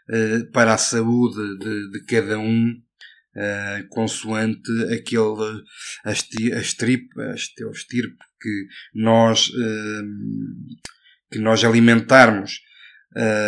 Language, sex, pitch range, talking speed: Portuguese, male, 110-125 Hz, 85 wpm